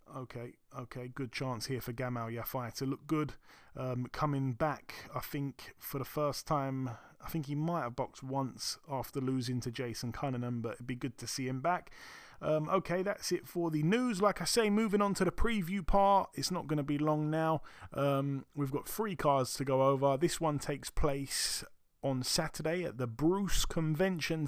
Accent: British